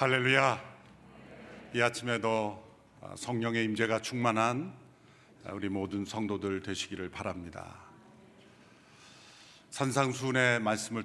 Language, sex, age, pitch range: Korean, male, 50-69, 95-115 Hz